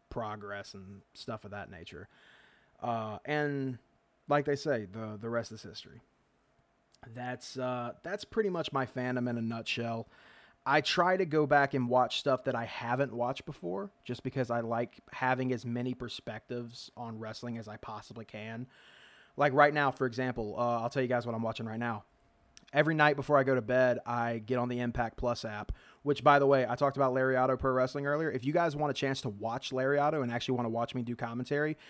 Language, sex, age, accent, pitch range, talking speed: English, male, 30-49, American, 115-140 Hz, 205 wpm